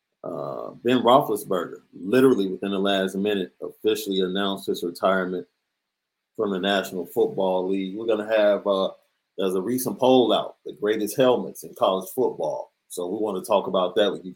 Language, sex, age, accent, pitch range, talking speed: English, male, 40-59, American, 100-125 Hz, 170 wpm